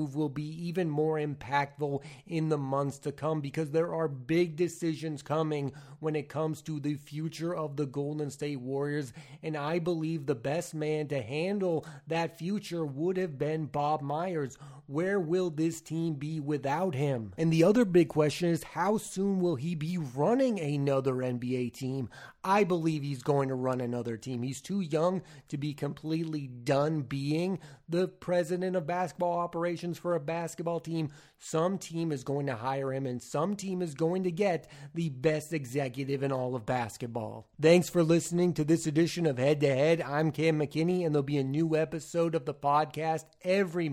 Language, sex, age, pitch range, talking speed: English, male, 30-49, 140-170 Hz, 180 wpm